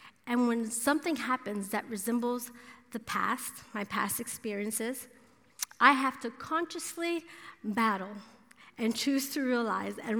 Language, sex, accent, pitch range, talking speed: English, female, American, 225-265 Hz, 125 wpm